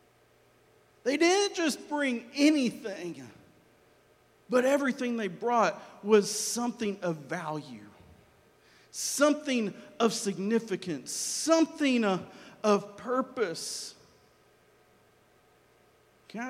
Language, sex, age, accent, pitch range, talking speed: English, male, 50-69, American, 205-280 Hz, 75 wpm